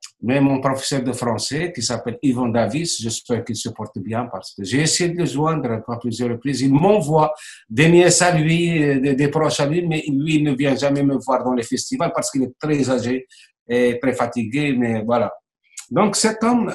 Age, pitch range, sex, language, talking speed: 60-79, 120-155 Hz, male, French, 210 wpm